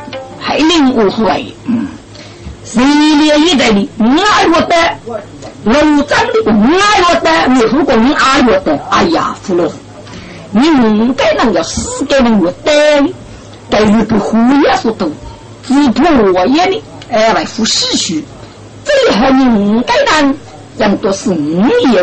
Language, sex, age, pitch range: Chinese, female, 50-69, 220-300 Hz